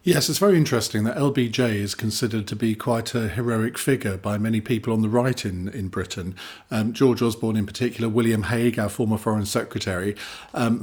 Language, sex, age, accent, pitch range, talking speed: English, male, 50-69, British, 105-125 Hz, 195 wpm